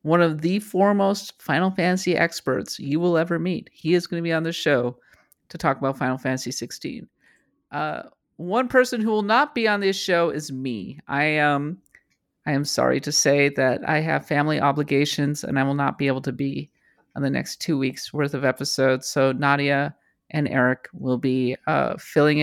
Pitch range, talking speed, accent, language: 140-180 Hz, 195 wpm, American, English